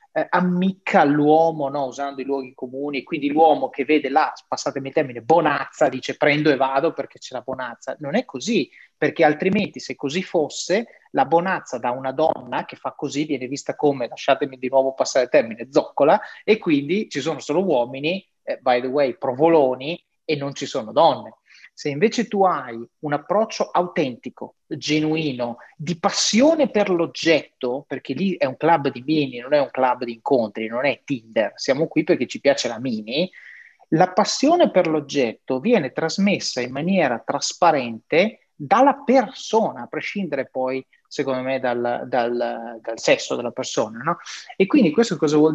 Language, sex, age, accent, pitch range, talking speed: Italian, male, 30-49, native, 130-180 Hz, 170 wpm